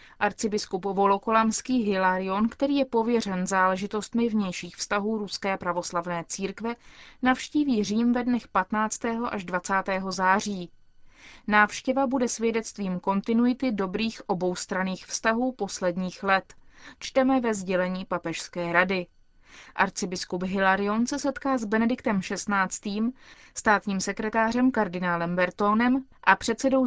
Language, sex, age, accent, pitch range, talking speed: Czech, female, 20-39, native, 190-230 Hz, 105 wpm